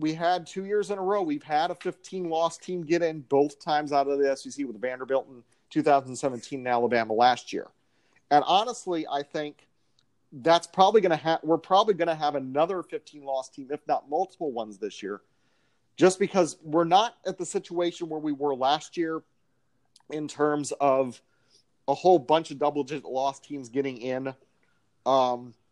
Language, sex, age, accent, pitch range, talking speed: English, male, 40-59, American, 130-165 Hz, 180 wpm